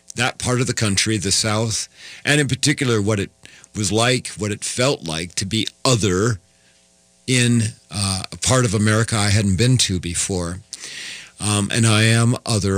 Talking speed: 175 wpm